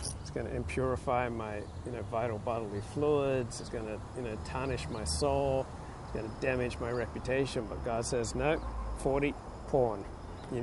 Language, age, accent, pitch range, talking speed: English, 50-69, American, 115-135 Hz, 175 wpm